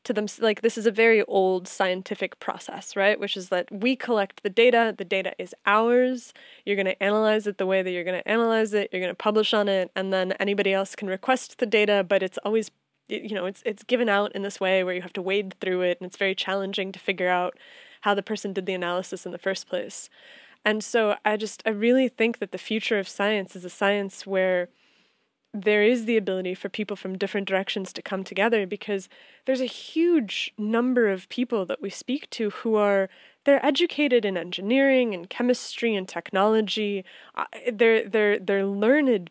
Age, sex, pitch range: 20-39, female, 195-235 Hz